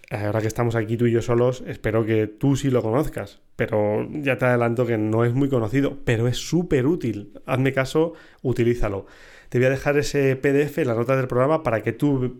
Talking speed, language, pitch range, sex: 210 wpm, Spanish, 115-145 Hz, male